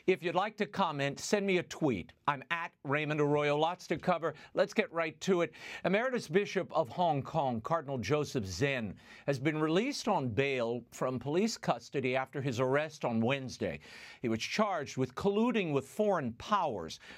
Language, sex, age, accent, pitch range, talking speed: English, male, 50-69, American, 140-195 Hz, 175 wpm